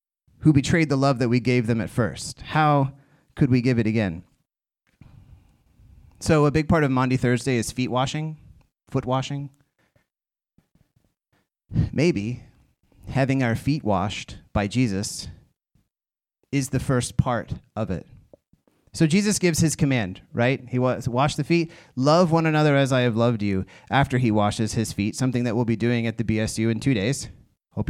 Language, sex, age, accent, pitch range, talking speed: English, male, 30-49, American, 115-150 Hz, 165 wpm